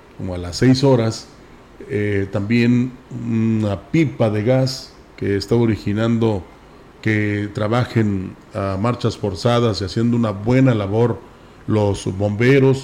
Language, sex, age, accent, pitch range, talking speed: Spanish, male, 40-59, Mexican, 110-130 Hz, 120 wpm